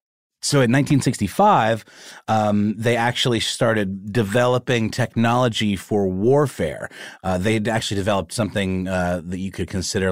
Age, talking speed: 30-49, 125 wpm